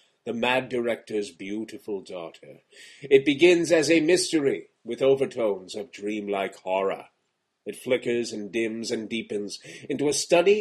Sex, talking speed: male, 135 wpm